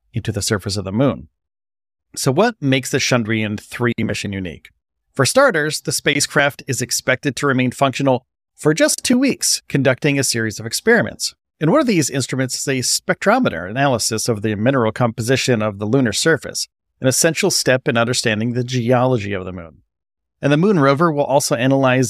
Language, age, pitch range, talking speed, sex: English, 40-59, 110-140 Hz, 180 wpm, male